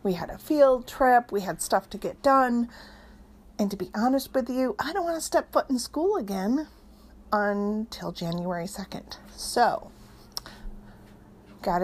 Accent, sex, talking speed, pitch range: American, female, 155 wpm, 195-265 Hz